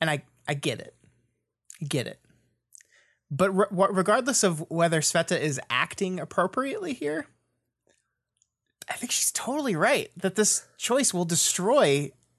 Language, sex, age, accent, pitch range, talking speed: English, male, 30-49, American, 145-205 Hz, 130 wpm